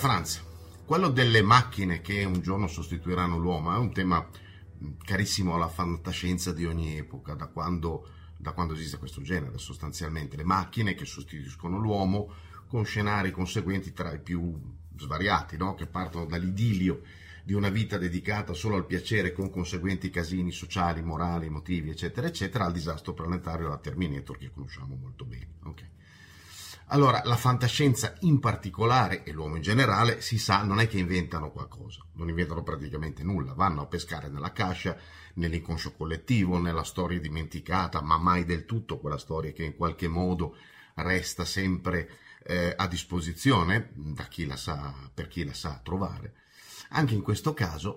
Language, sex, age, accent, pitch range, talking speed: Italian, male, 40-59, native, 85-100 Hz, 155 wpm